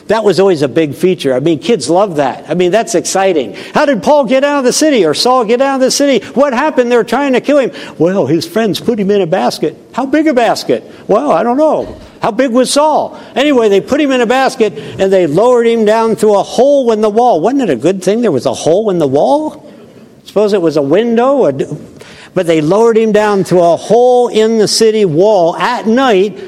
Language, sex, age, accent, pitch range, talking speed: English, male, 60-79, American, 170-250 Hz, 240 wpm